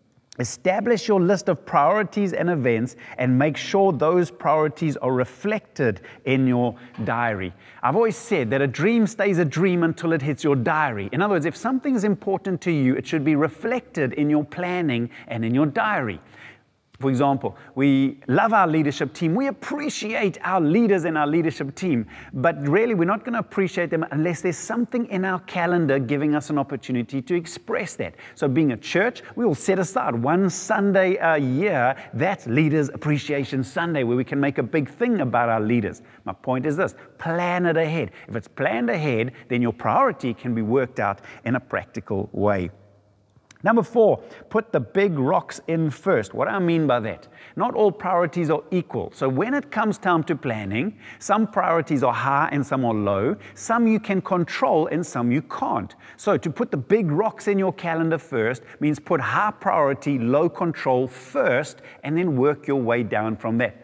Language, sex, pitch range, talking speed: English, male, 125-185 Hz, 190 wpm